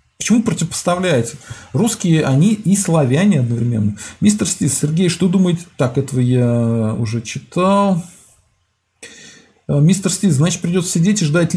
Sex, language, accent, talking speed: male, Russian, native, 125 wpm